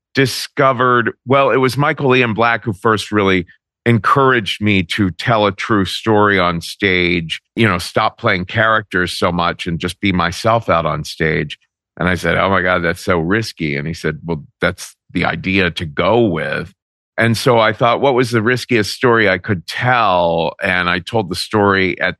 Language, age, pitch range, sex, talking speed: English, 50-69, 90-120 Hz, male, 190 wpm